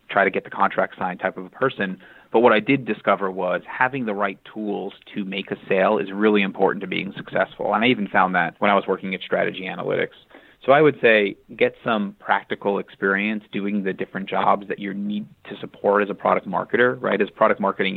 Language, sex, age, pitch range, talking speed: English, male, 30-49, 95-110 Hz, 225 wpm